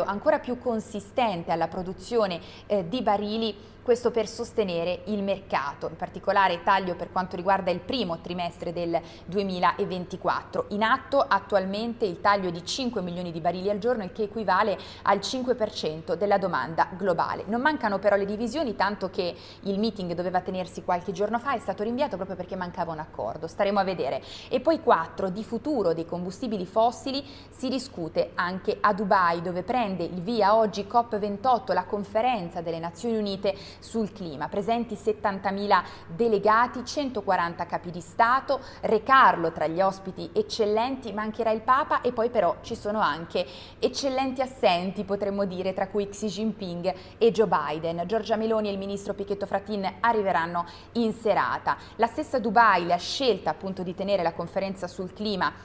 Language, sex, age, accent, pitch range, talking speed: Italian, female, 20-39, native, 185-225 Hz, 165 wpm